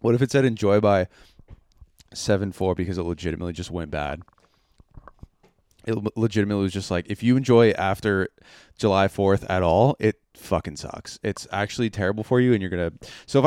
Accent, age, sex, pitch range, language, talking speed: American, 20-39, male, 95-135 Hz, English, 180 wpm